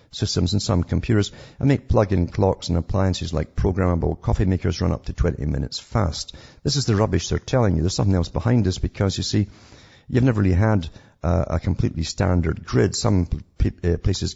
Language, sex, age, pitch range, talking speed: English, male, 50-69, 85-105 Hz, 190 wpm